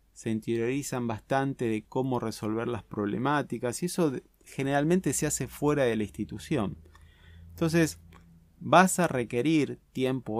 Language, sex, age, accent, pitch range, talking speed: Spanish, male, 30-49, Argentinian, 105-135 Hz, 125 wpm